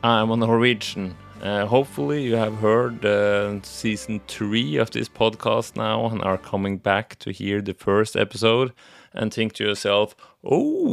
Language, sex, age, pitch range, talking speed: English, male, 30-49, 100-115 Hz, 155 wpm